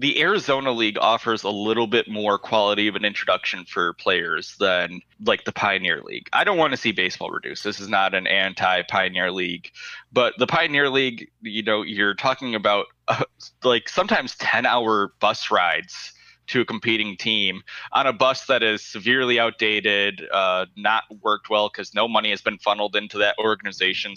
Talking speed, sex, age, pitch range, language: 180 wpm, male, 20-39, 105-130 Hz, English